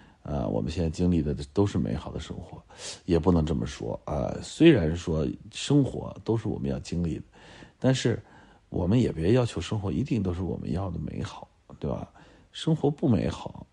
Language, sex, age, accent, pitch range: Chinese, male, 50-69, native, 85-105 Hz